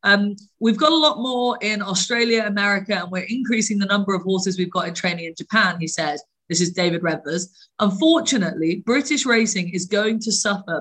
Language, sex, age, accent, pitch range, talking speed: English, female, 30-49, British, 180-225 Hz, 195 wpm